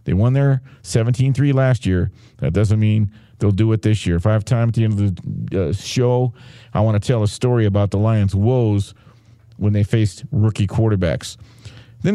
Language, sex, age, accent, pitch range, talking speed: English, male, 50-69, American, 110-135 Hz, 200 wpm